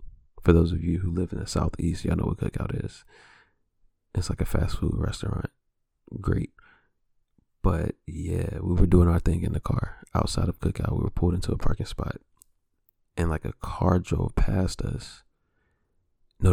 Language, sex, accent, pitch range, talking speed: English, male, American, 80-95 Hz, 180 wpm